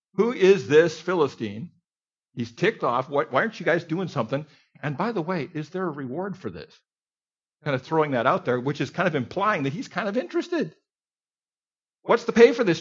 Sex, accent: male, American